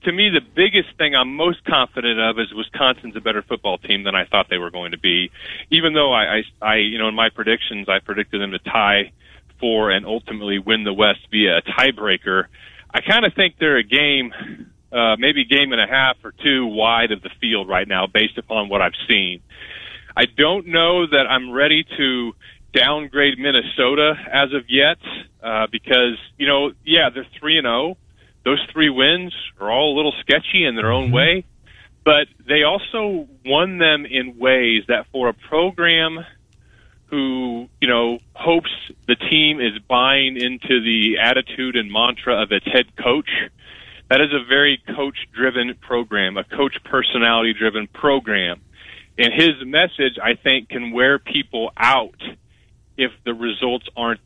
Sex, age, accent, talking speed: male, 30-49, American, 175 wpm